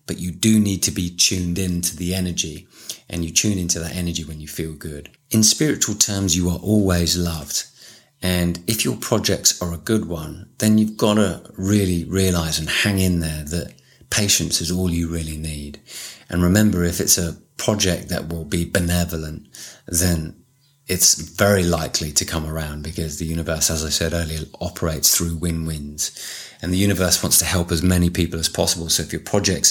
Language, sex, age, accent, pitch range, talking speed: English, male, 30-49, British, 80-95 Hz, 190 wpm